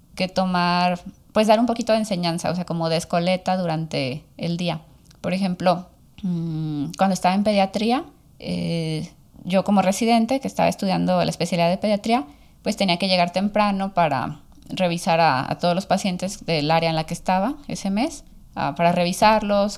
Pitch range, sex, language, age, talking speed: 170-200 Hz, female, Spanish, 20-39, 175 wpm